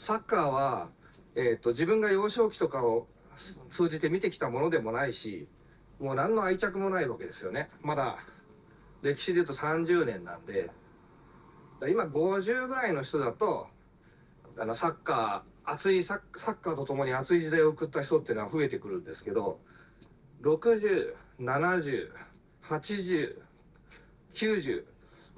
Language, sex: Japanese, male